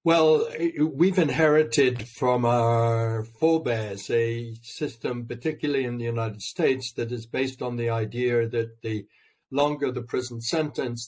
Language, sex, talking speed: English, male, 135 wpm